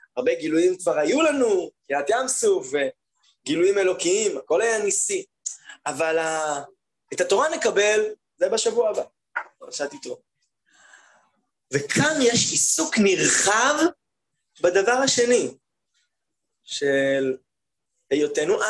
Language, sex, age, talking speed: Hebrew, male, 20-39, 100 wpm